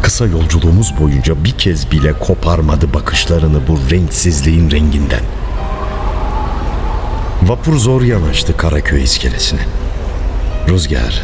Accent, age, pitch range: native, 60-79, 75-95 Hz